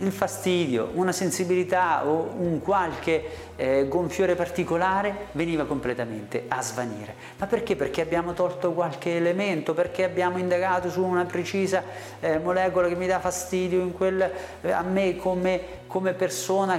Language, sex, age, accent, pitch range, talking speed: Italian, male, 40-59, native, 140-195 Hz, 145 wpm